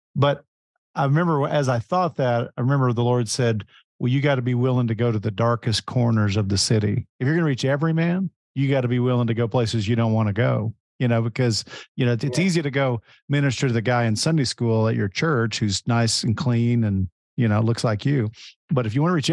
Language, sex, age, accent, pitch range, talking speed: English, male, 50-69, American, 110-135 Hz, 260 wpm